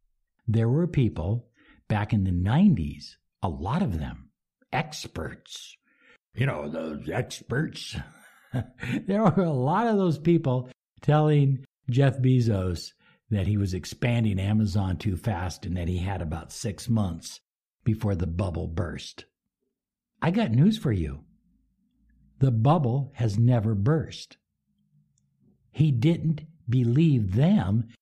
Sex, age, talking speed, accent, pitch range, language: male, 60-79, 125 wpm, American, 95-140 Hz, English